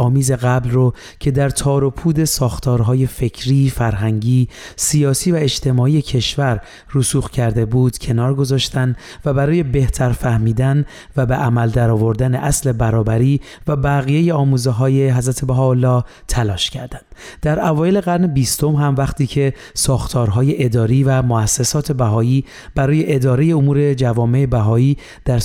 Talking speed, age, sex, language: 125 wpm, 30-49, male, Persian